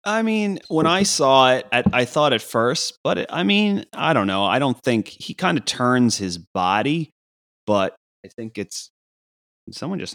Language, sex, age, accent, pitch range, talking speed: English, male, 30-49, American, 85-115 Hz, 200 wpm